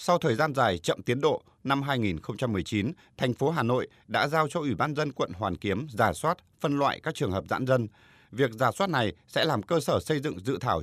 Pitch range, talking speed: 105-150 Hz, 240 wpm